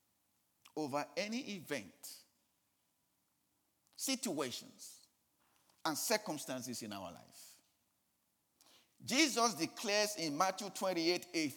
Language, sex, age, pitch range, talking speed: Dutch, male, 50-69, 175-235 Hz, 75 wpm